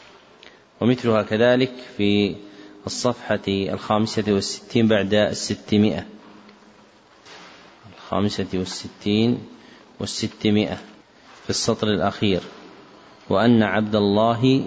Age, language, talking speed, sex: 30-49, Arabic, 70 wpm, male